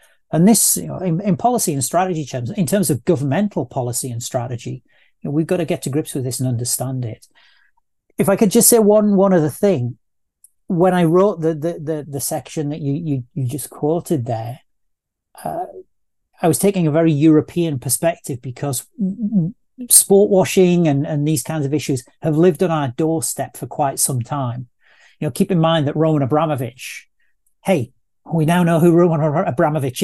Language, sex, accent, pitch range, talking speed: English, male, British, 135-175 Hz, 190 wpm